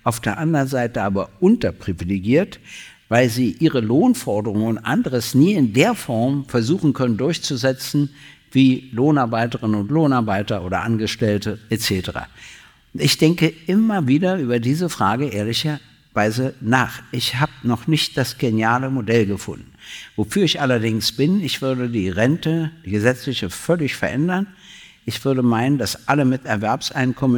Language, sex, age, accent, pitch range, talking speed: German, male, 60-79, German, 115-145 Hz, 135 wpm